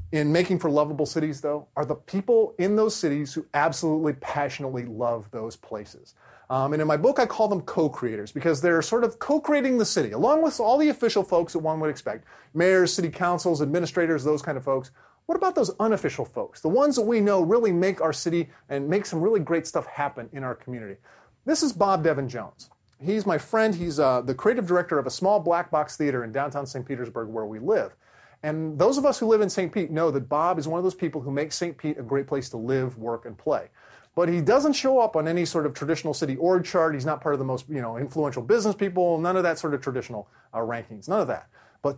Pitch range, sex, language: 140-185 Hz, male, English